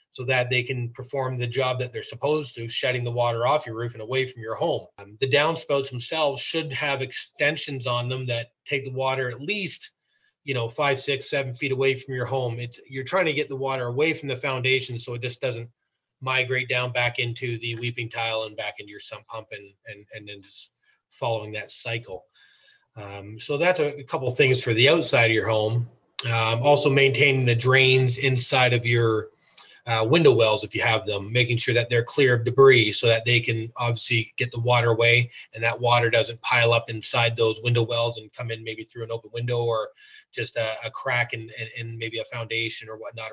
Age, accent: 30-49, American